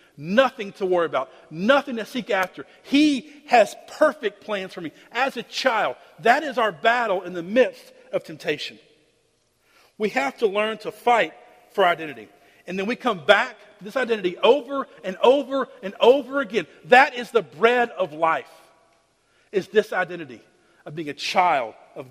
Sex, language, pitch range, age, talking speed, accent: male, English, 190-275 Hz, 50-69, 170 wpm, American